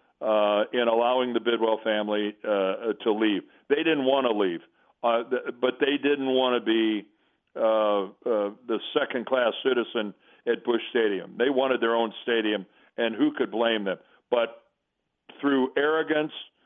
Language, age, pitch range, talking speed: English, 50-69, 110-135 Hz, 140 wpm